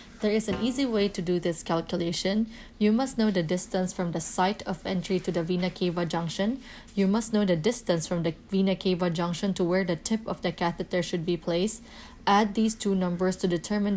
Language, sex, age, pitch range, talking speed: English, female, 20-39, 180-200 Hz, 215 wpm